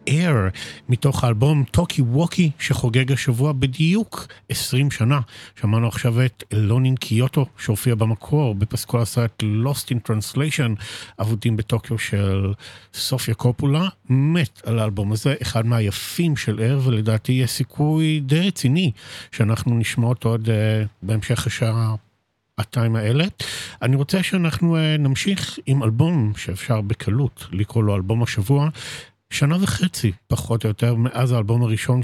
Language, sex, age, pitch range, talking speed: Hebrew, male, 50-69, 110-140 Hz, 125 wpm